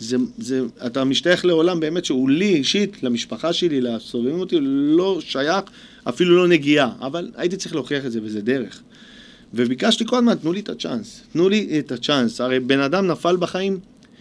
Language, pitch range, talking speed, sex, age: Hebrew, 125-200 Hz, 175 wpm, male, 40-59